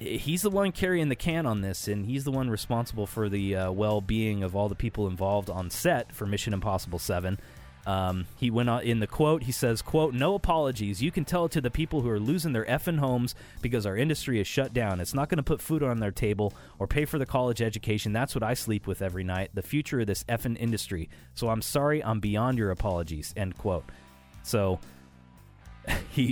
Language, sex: English, male